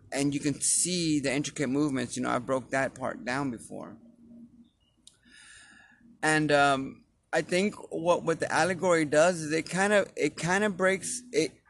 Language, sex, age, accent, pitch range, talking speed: English, male, 30-49, American, 130-160 Hz, 170 wpm